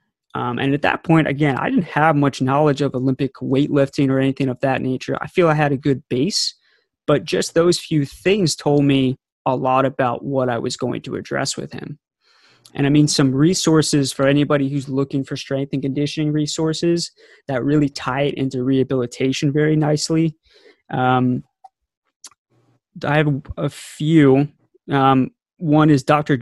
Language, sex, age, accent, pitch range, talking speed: English, male, 20-39, American, 135-150 Hz, 170 wpm